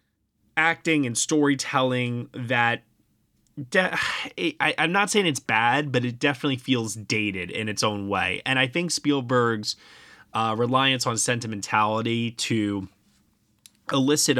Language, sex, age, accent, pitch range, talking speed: English, male, 20-39, American, 110-135 Hz, 115 wpm